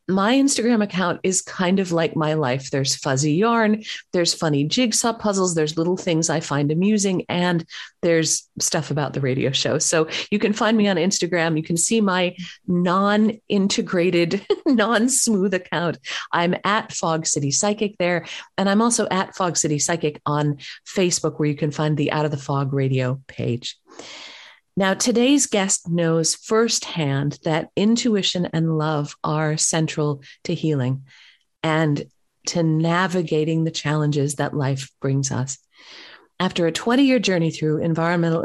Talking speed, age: 155 wpm, 40-59